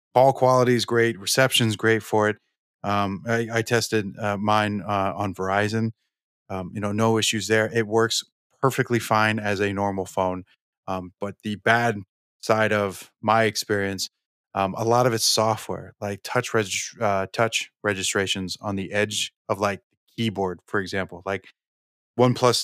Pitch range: 100-115 Hz